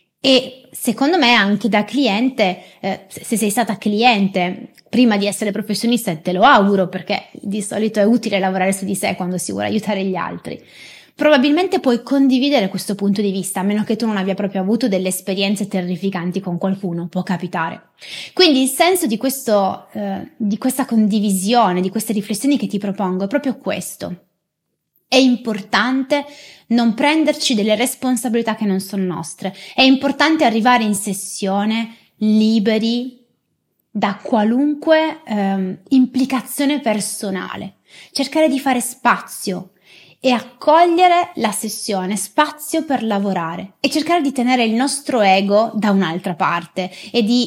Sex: female